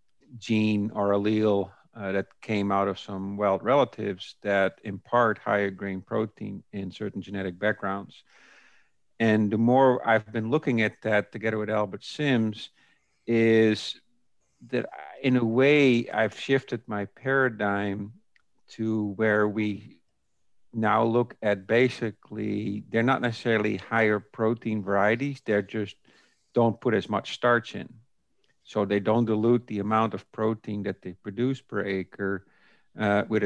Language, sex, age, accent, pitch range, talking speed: English, male, 50-69, American, 100-115 Hz, 140 wpm